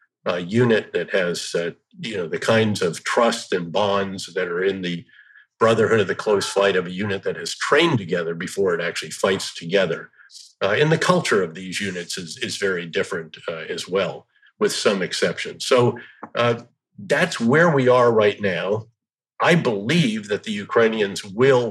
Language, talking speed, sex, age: English, 180 wpm, male, 50-69